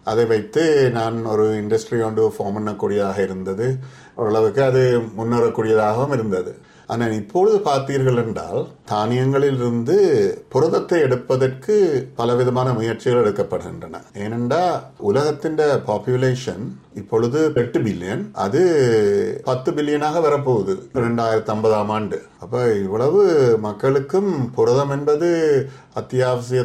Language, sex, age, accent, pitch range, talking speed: Tamil, male, 50-69, native, 115-145 Hz, 100 wpm